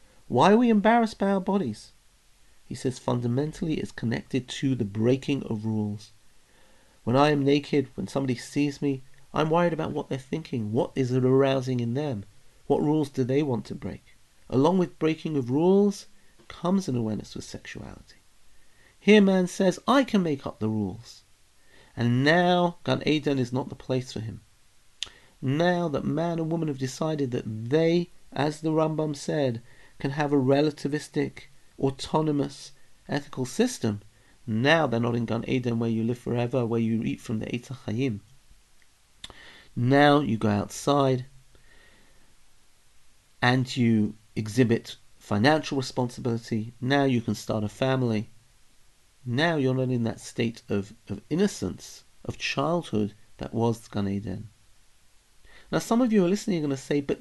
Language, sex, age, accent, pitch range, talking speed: English, male, 40-59, British, 110-150 Hz, 160 wpm